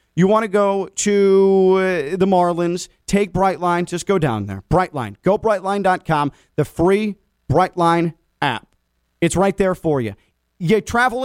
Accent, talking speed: American, 150 wpm